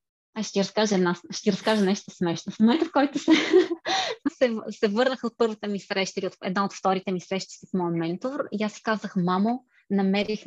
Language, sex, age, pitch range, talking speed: Bulgarian, female, 20-39, 195-270 Hz, 205 wpm